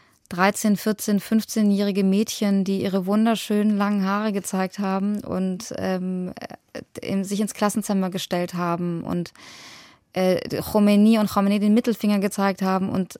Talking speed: 130 wpm